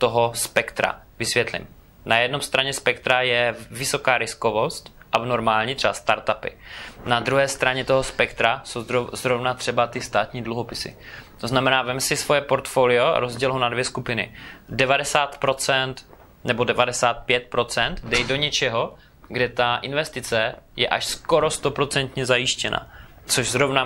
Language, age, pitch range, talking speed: Czech, 20-39, 115-130 Hz, 135 wpm